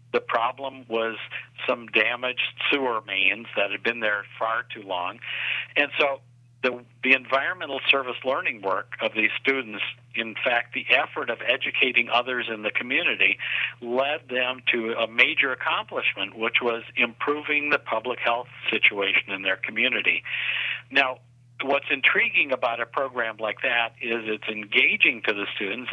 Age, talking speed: 50-69, 150 wpm